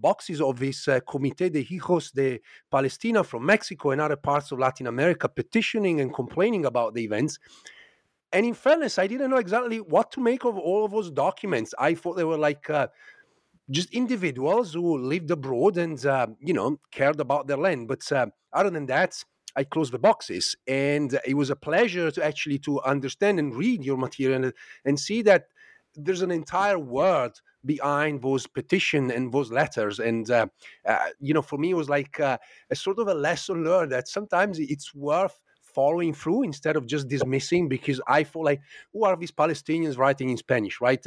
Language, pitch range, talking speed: English, 135-185 Hz, 195 wpm